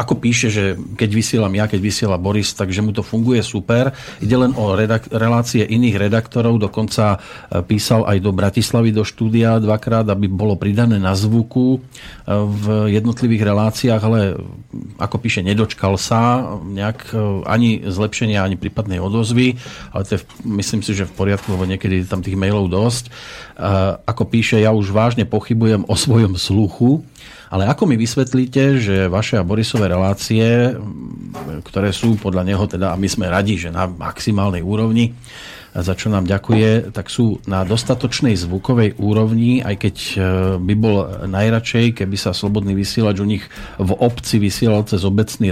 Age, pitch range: 40-59, 100-115 Hz